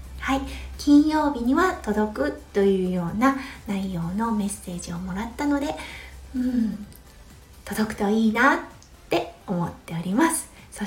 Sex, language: female, Japanese